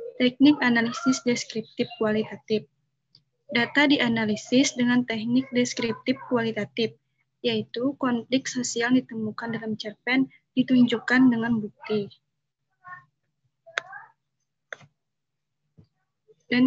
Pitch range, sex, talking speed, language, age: 215-260 Hz, female, 70 wpm, Indonesian, 20-39